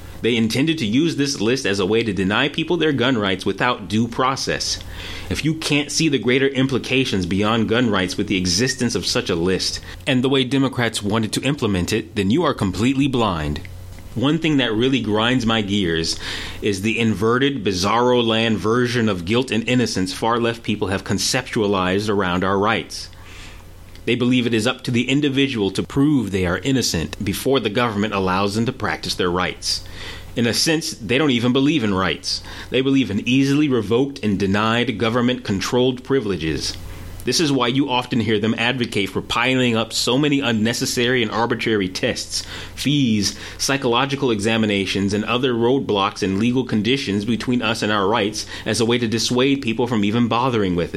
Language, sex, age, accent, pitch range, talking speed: English, male, 30-49, American, 95-125 Hz, 180 wpm